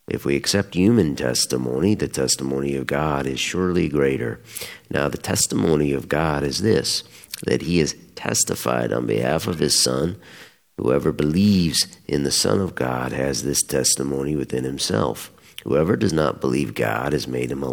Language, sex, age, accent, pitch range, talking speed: English, male, 50-69, American, 65-85 Hz, 165 wpm